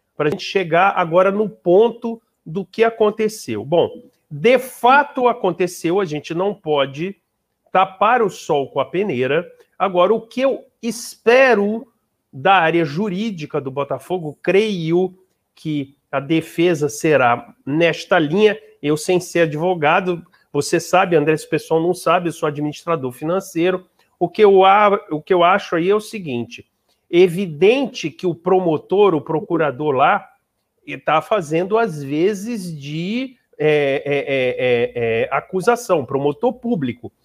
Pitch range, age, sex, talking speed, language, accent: 155-220 Hz, 40-59, male, 130 wpm, Portuguese, Brazilian